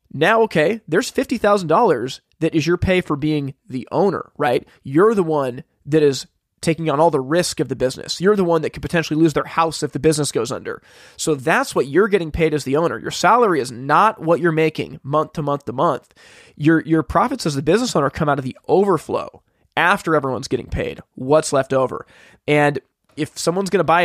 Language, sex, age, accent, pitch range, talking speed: English, male, 20-39, American, 145-170 Hz, 215 wpm